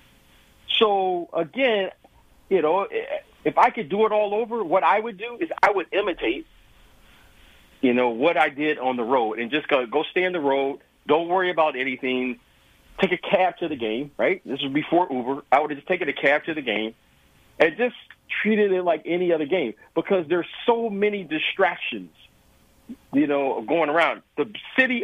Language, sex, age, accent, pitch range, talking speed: English, male, 50-69, American, 150-230 Hz, 190 wpm